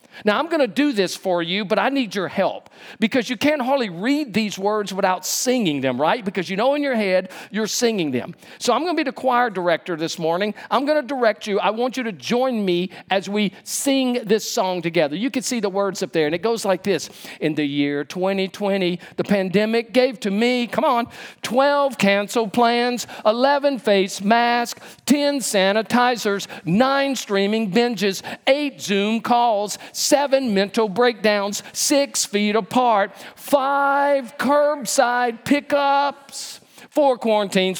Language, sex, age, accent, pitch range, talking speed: English, male, 50-69, American, 190-255 Hz, 170 wpm